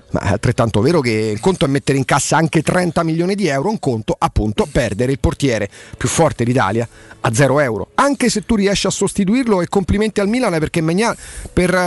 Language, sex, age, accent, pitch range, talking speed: Italian, male, 40-59, native, 130-170 Hz, 200 wpm